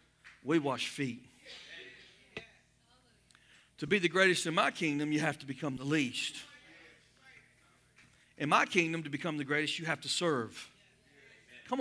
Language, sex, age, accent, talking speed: English, male, 40-59, American, 140 wpm